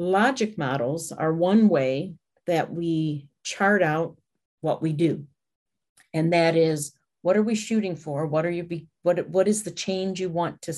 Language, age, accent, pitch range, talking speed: Polish, 50-69, American, 155-190 Hz, 175 wpm